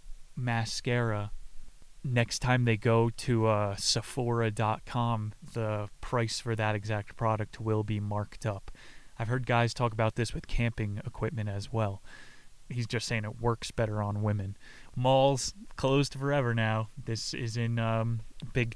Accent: American